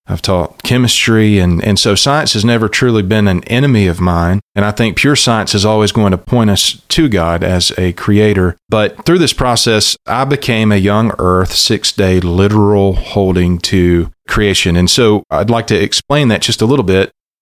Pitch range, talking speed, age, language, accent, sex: 95-115 Hz, 195 wpm, 40-59, English, American, male